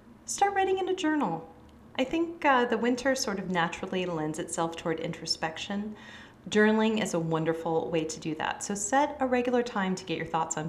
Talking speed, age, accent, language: 195 wpm, 30-49, American, English